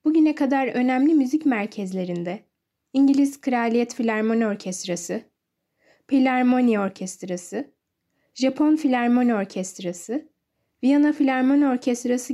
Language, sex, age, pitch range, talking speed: Turkish, female, 10-29, 215-280 Hz, 85 wpm